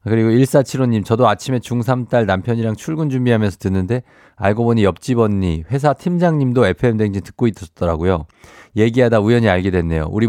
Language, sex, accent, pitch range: Korean, male, native, 95-130 Hz